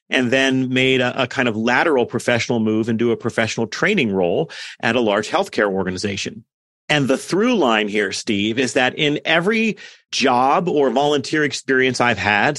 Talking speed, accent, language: 170 wpm, American, English